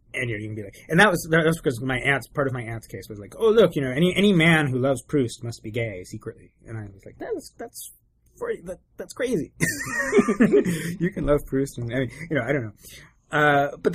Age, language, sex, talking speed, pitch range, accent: 30-49, English, male, 250 wpm, 100-145 Hz, American